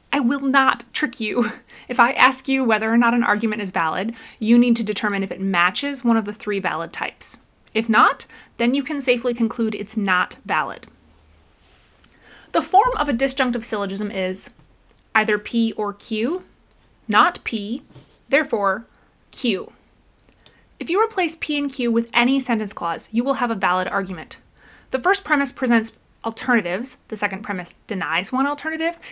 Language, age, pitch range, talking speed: English, 20-39, 205-255 Hz, 165 wpm